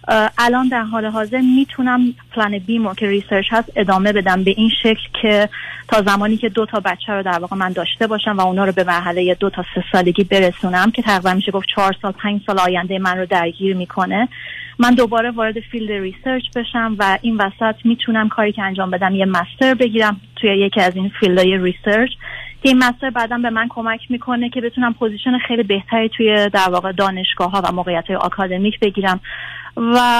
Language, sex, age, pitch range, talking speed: Persian, female, 30-49, 195-235 Hz, 190 wpm